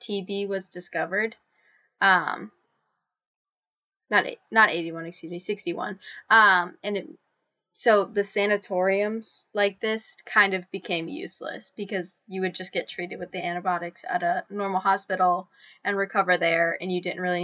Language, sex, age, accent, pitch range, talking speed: English, female, 10-29, American, 180-215 Hz, 140 wpm